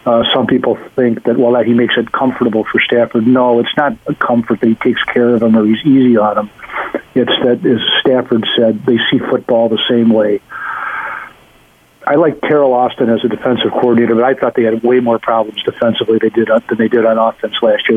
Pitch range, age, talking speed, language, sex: 110-125 Hz, 50-69, 220 wpm, English, male